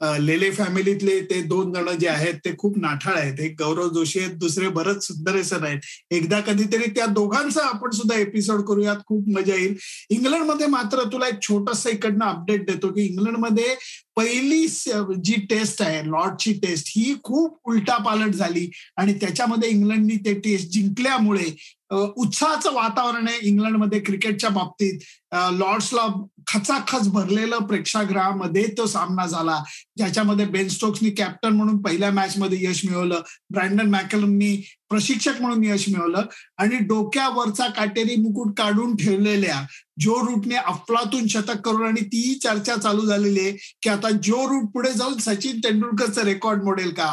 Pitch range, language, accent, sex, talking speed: 190-230 Hz, Marathi, native, male, 140 wpm